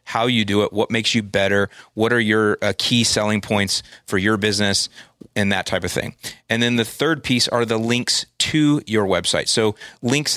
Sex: male